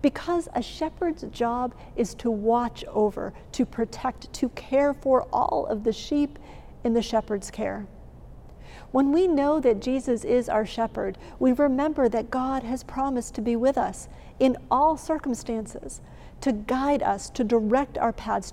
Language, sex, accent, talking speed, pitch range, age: English, female, American, 160 wpm, 220-265 Hz, 50-69